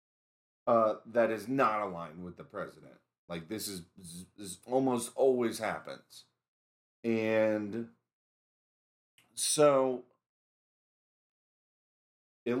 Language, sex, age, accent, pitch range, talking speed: English, male, 30-49, American, 95-135 Hz, 85 wpm